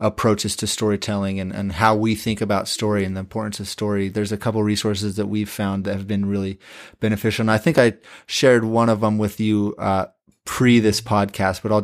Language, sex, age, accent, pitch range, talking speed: English, male, 30-49, American, 100-110 Hz, 225 wpm